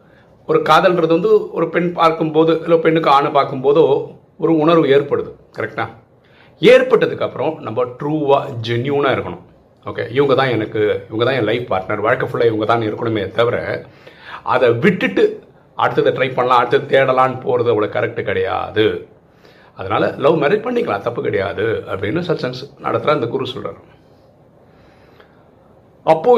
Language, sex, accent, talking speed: Tamil, male, native, 135 wpm